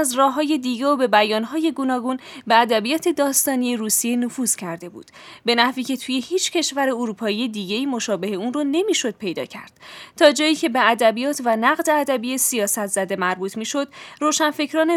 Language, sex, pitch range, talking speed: Persian, female, 220-285 Hz, 165 wpm